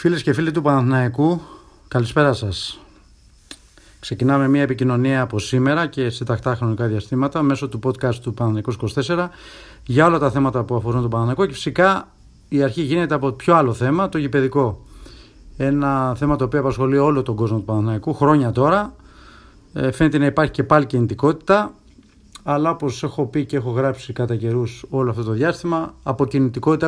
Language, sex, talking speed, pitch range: Greek, male, 165 wpm, 125-155 Hz